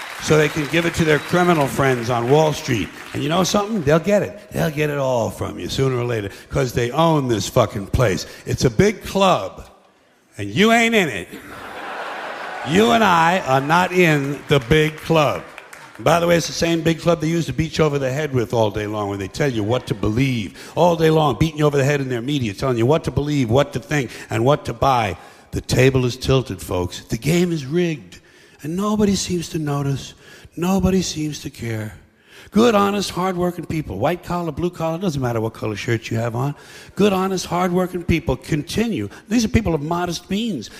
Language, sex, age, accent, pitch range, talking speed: English, male, 60-79, American, 125-180 Hz, 215 wpm